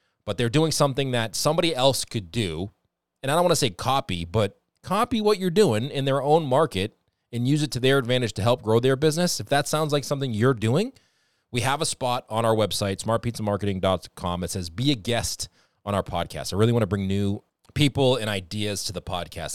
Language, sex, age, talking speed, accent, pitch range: English, male, 20-39, 220 wpm, American, 95-125 Hz